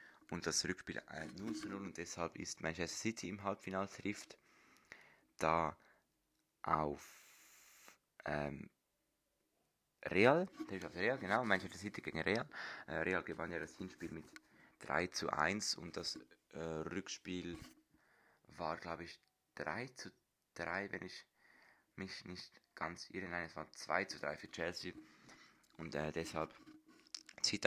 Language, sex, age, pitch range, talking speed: German, male, 20-39, 85-110 Hz, 125 wpm